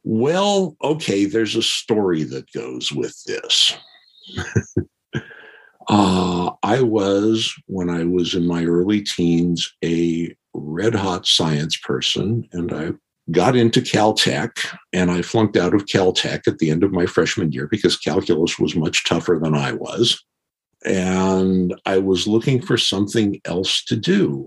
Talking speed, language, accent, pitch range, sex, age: 140 wpm, English, American, 85-100 Hz, male, 60-79